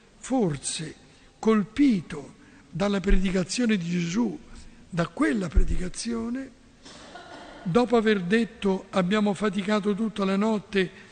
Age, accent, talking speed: 60-79, native, 90 wpm